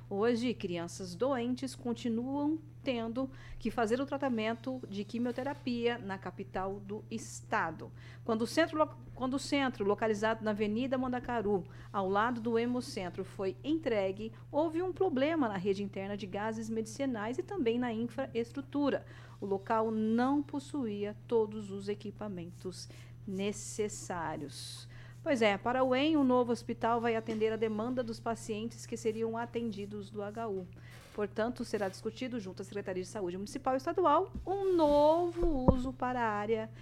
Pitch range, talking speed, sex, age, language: 185-250 Hz, 140 wpm, female, 50-69, Portuguese